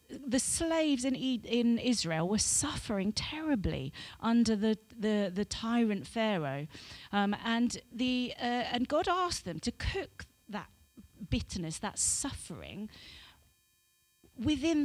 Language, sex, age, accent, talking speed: English, female, 40-59, British, 115 wpm